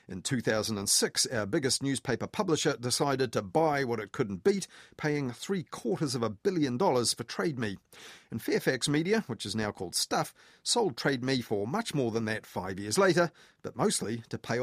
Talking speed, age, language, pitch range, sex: 180 wpm, 40-59, English, 120-155 Hz, male